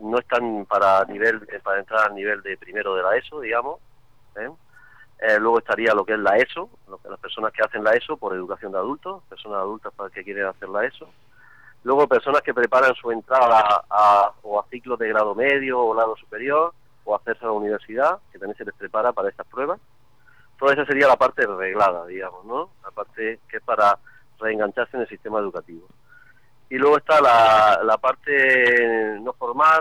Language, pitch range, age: Spanish, 105-130 Hz, 30-49